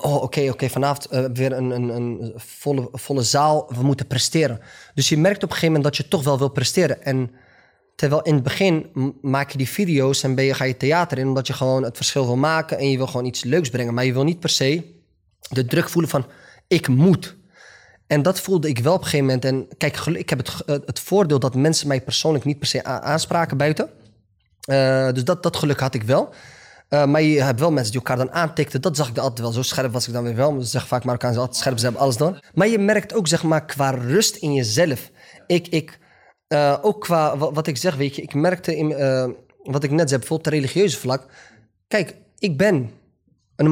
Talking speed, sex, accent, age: 235 wpm, male, Dutch, 20-39